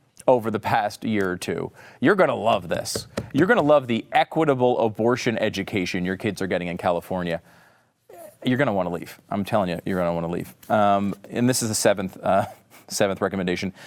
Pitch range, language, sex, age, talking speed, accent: 95-125 Hz, English, male, 40-59, 205 wpm, American